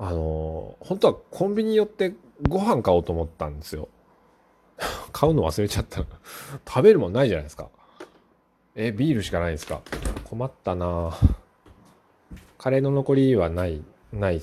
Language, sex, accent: Japanese, male, native